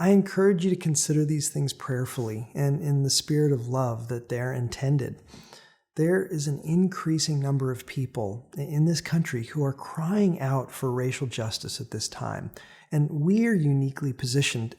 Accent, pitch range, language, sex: American, 125-155 Hz, English, male